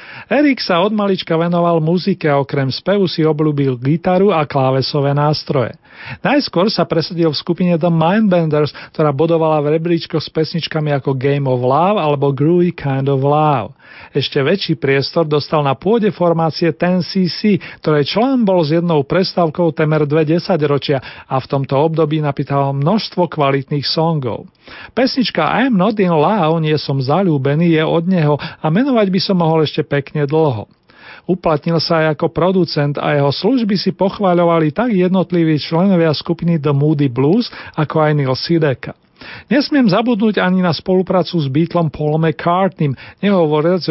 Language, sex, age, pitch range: Slovak, male, 40-59, 150-180 Hz